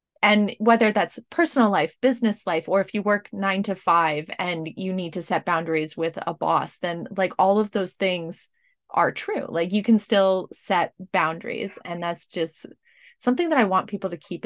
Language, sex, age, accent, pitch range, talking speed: English, female, 20-39, American, 185-240 Hz, 195 wpm